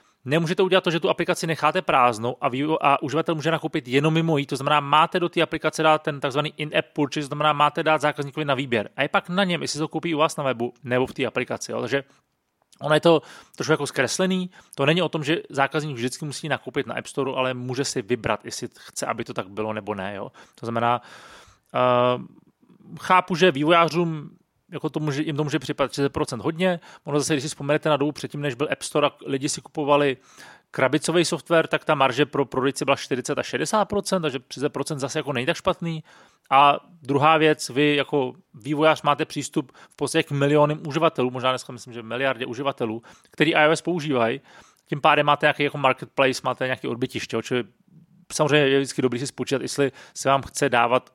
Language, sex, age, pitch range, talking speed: Czech, male, 30-49, 130-160 Hz, 210 wpm